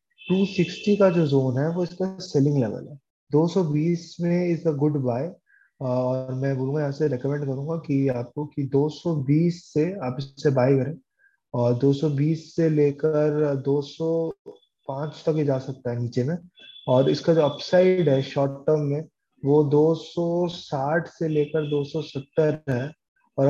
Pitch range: 135-165 Hz